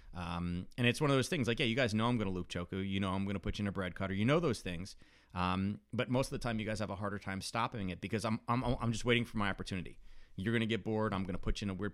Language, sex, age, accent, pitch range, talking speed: English, male, 30-49, American, 90-115 Hz, 340 wpm